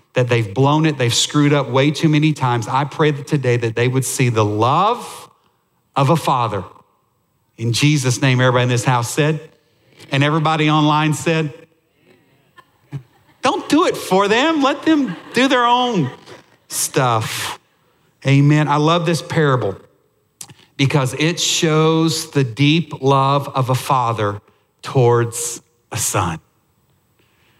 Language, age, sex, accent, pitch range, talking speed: English, 50-69, male, American, 130-160 Hz, 140 wpm